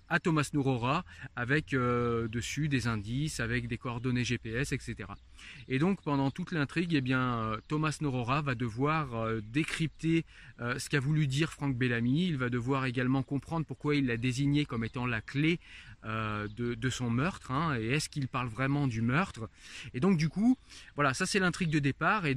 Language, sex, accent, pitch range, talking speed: French, male, French, 120-150 Hz, 185 wpm